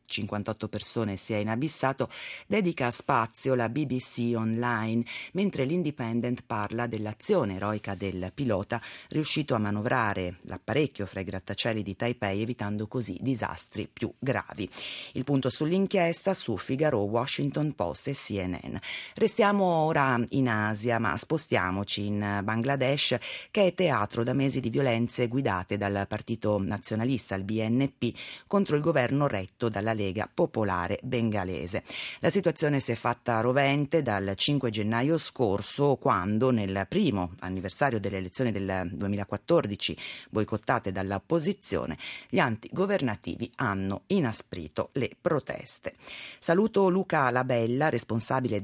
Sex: female